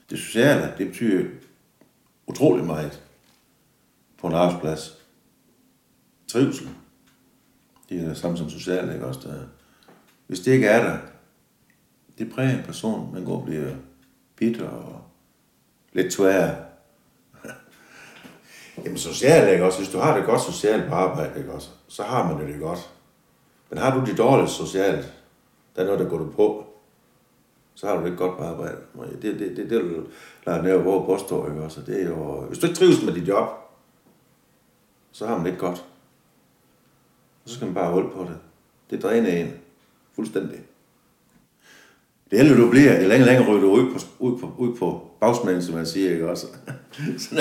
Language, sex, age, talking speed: Danish, male, 60-79, 170 wpm